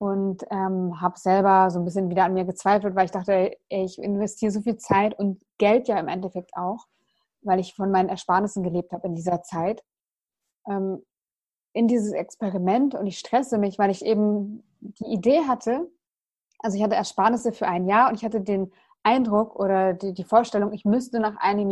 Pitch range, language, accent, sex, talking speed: 190-220 Hz, German, German, female, 195 wpm